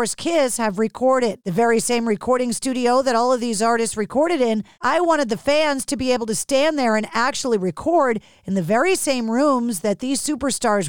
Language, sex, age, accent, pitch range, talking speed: English, female, 40-59, American, 225-280 Hz, 200 wpm